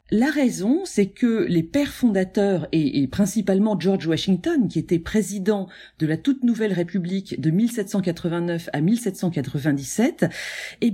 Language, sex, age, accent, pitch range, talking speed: French, female, 40-59, French, 185-255 Hz, 135 wpm